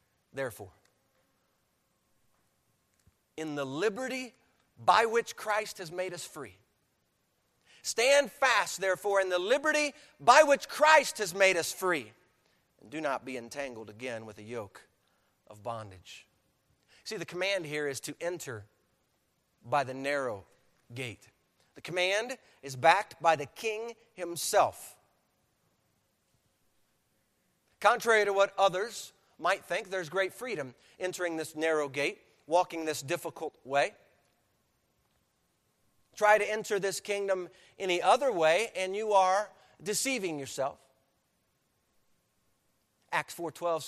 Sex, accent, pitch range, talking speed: male, American, 140-205 Hz, 120 wpm